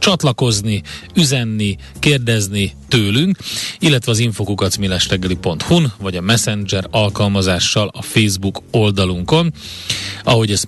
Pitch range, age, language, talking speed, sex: 100-120 Hz, 30-49, Hungarian, 90 wpm, male